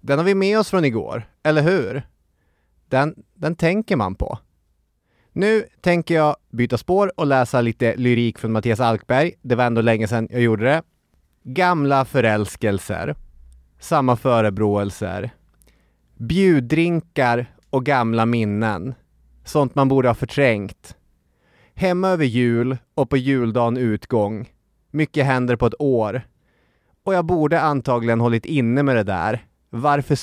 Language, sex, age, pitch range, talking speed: English, male, 30-49, 110-145 Hz, 135 wpm